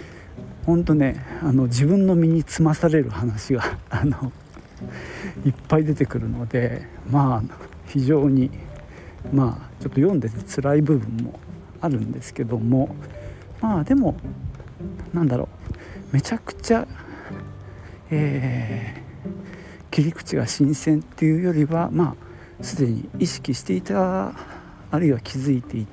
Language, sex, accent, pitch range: Japanese, male, native, 115-155 Hz